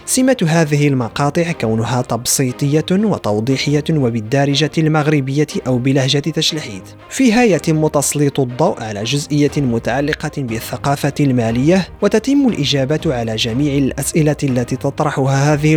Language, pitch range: French, 130-155 Hz